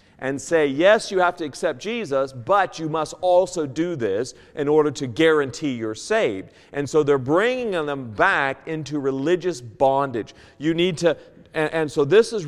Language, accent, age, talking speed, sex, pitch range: English, American, 40-59, 180 wpm, male, 130-190 Hz